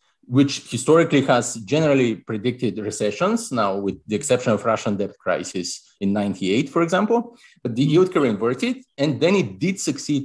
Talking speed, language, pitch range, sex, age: 165 wpm, English, 105-140 Hz, male, 30-49